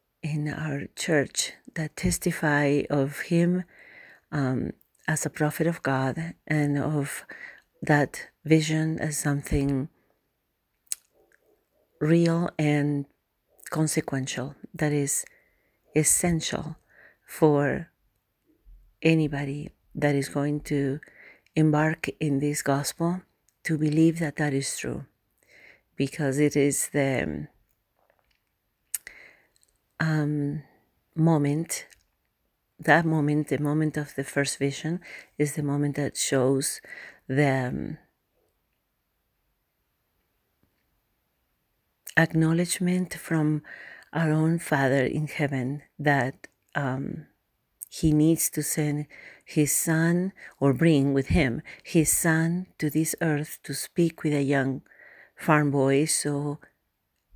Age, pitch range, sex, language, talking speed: 40-59, 140-160 Hz, female, English, 100 wpm